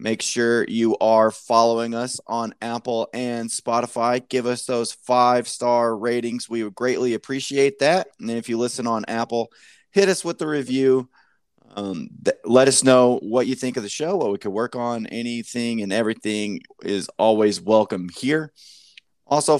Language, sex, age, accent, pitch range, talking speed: English, male, 20-39, American, 105-125 Hz, 165 wpm